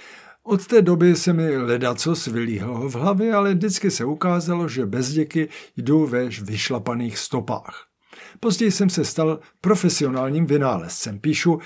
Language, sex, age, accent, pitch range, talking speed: Czech, male, 60-79, native, 125-185 Hz, 140 wpm